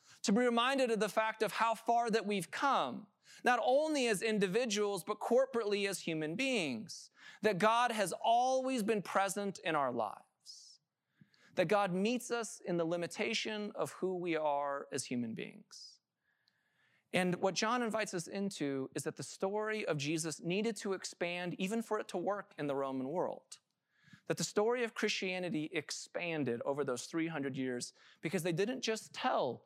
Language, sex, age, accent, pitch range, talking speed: English, male, 30-49, American, 160-220 Hz, 170 wpm